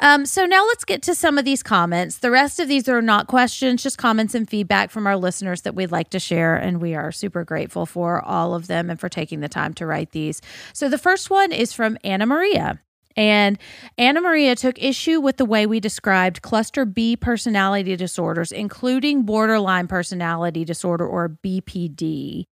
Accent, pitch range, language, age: American, 170-230 Hz, English, 30-49